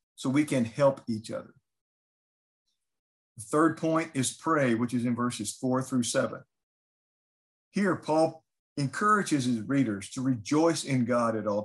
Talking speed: 150 wpm